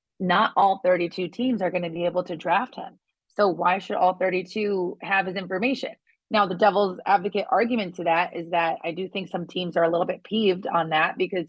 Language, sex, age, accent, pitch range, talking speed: English, female, 30-49, American, 180-215 Hz, 220 wpm